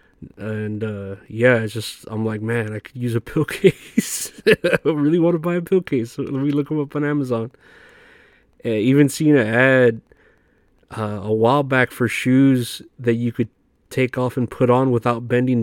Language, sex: English, male